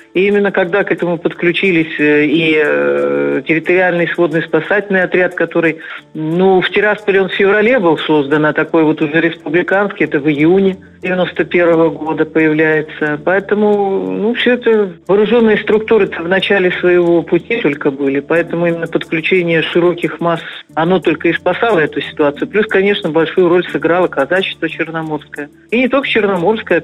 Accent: native